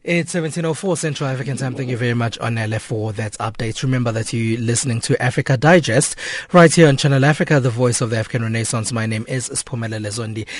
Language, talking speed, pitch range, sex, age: English, 205 wpm, 115-145 Hz, male, 20-39